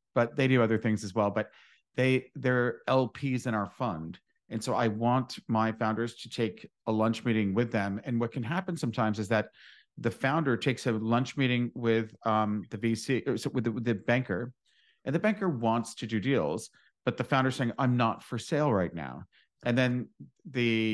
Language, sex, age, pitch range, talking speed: English, male, 40-59, 110-130 Hz, 195 wpm